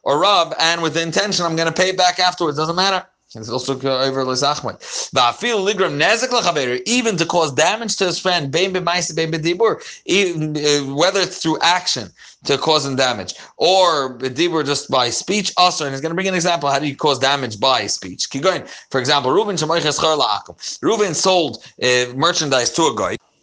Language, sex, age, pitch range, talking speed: English, male, 30-49, 155-200 Hz, 160 wpm